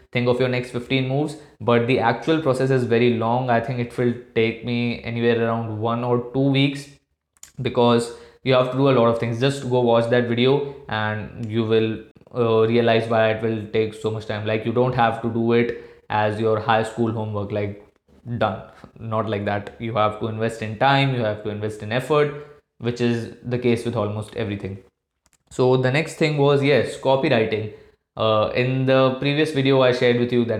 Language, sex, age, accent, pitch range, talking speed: Hindi, male, 20-39, native, 115-130 Hz, 205 wpm